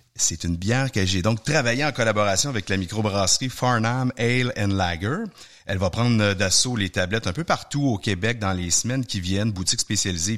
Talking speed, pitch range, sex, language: 190 wpm, 95-125 Hz, male, French